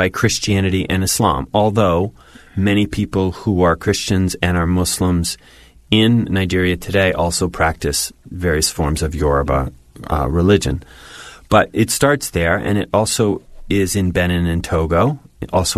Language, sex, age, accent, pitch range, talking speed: English, male, 30-49, American, 85-105 Hz, 135 wpm